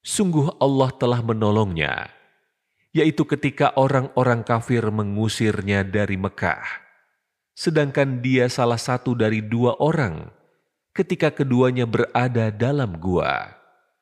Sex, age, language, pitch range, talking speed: male, 30-49, Indonesian, 95-135 Hz, 100 wpm